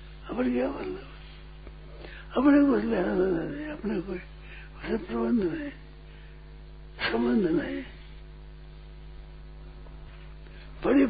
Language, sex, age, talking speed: Hindi, male, 60-79, 80 wpm